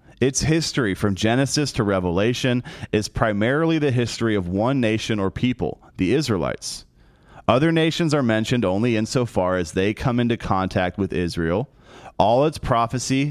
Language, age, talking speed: English, 30-49, 150 wpm